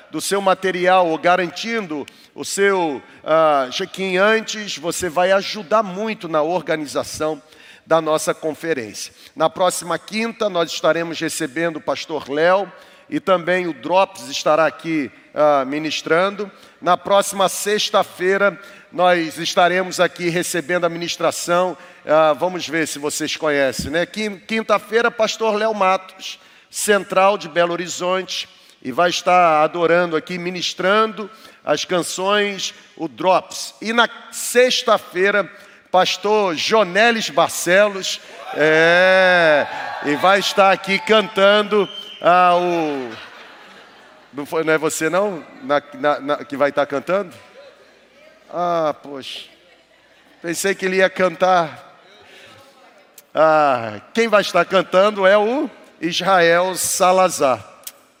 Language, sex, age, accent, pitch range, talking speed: Portuguese, male, 40-59, Brazilian, 165-200 Hz, 115 wpm